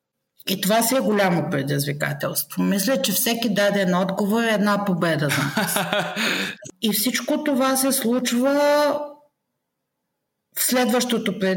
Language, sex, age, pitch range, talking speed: Bulgarian, female, 50-69, 190-225 Hz, 120 wpm